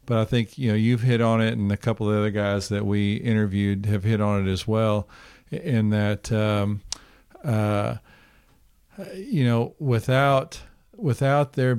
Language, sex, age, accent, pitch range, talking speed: English, male, 50-69, American, 105-125 Hz, 175 wpm